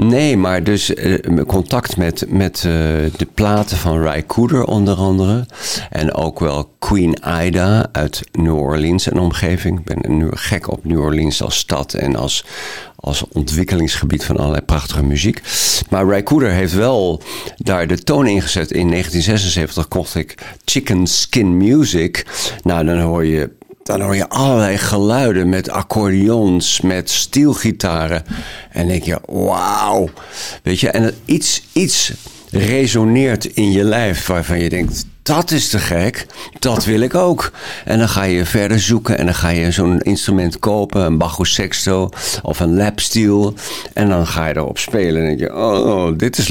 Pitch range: 85-105 Hz